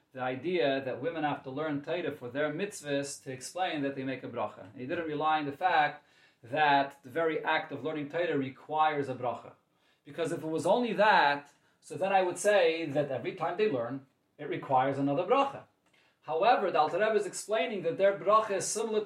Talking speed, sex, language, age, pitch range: 205 wpm, male, English, 30-49, 140-190 Hz